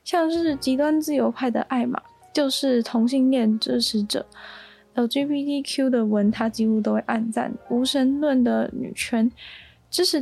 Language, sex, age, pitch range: Chinese, female, 10-29, 225-270 Hz